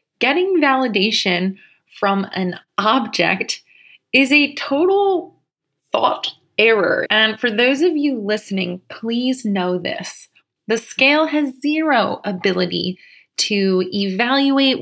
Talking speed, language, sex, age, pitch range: 105 wpm, English, female, 20-39, 185-235 Hz